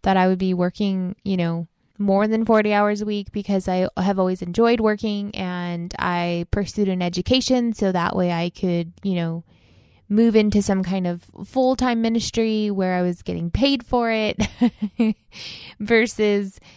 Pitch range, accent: 185-220 Hz, American